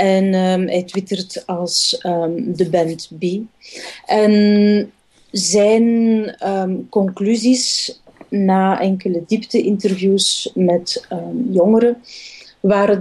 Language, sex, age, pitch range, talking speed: Dutch, female, 30-49, 185-220 Hz, 90 wpm